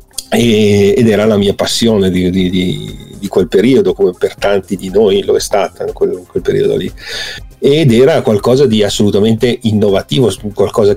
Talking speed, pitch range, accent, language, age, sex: 165 wpm, 105-135 Hz, native, Italian, 40-59, male